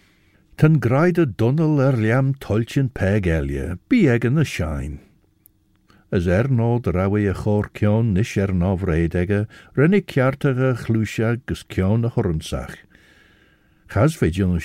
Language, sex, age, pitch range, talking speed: English, male, 60-79, 90-130 Hz, 125 wpm